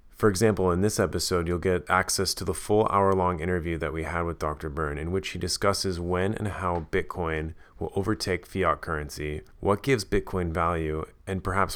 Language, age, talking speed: English, 30-49, 190 wpm